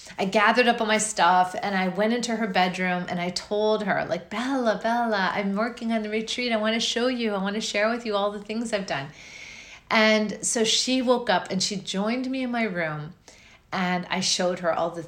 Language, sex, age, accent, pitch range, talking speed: English, female, 40-59, American, 200-265 Hz, 230 wpm